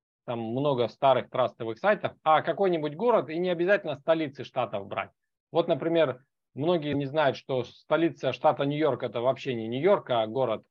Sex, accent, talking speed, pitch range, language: male, native, 165 wpm, 125-165 Hz, Russian